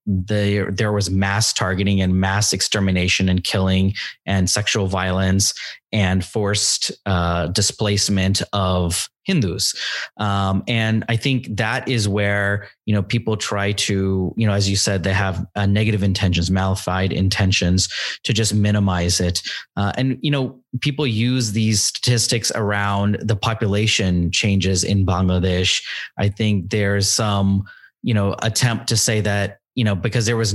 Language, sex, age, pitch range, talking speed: English, male, 30-49, 100-115 Hz, 150 wpm